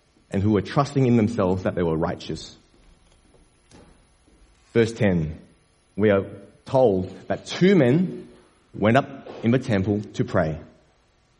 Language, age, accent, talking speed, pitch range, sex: English, 30-49, Australian, 130 wpm, 95-125 Hz, male